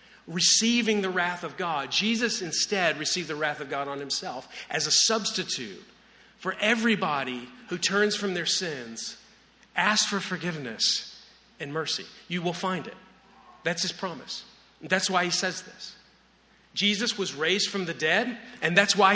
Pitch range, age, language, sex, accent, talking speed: 180-220 Hz, 40-59, English, male, American, 155 wpm